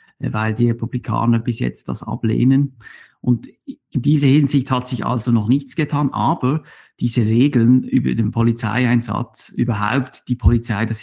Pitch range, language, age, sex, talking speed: 110-130 Hz, German, 50-69, male, 145 wpm